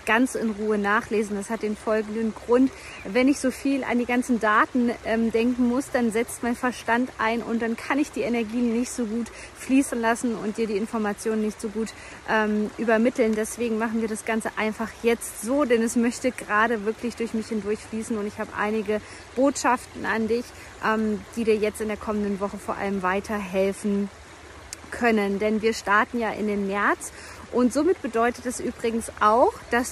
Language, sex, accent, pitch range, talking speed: German, female, German, 220-255 Hz, 190 wpm